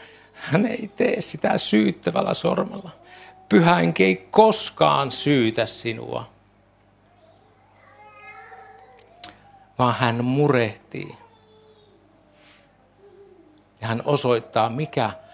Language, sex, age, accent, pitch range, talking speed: Finnish, male, 60-79, native, 100-130 Hz, 70 wpm